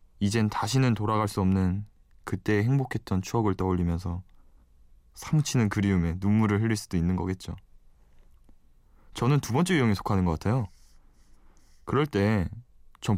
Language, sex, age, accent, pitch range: Korean, male, 20-39, native, 85-110 Hz